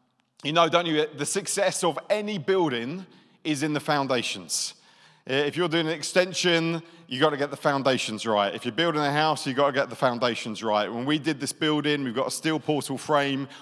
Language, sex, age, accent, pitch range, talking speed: English, male, 40-59, British, 125-155 Hz, 210 wpm